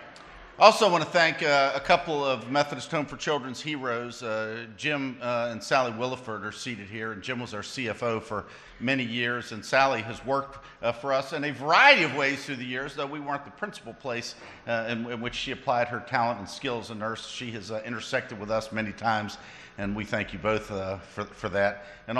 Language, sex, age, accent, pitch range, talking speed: English, male, 50-69, American, 105-130 Hz, 220 wpm